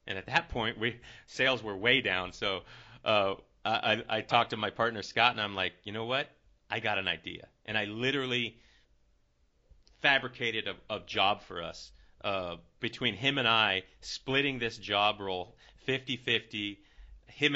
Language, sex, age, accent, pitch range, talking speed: English, male, 30-49, American, 105-125 Hz, 165 wpm